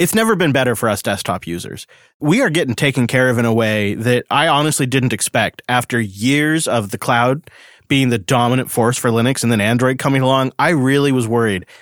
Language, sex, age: English, male, 30-49